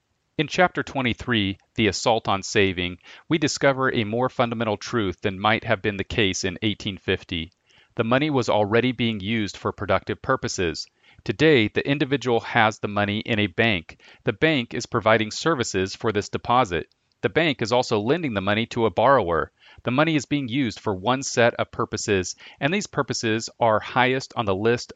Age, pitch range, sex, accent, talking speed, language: 40-59, 105-130 Hz, male, American, 180 wpm, English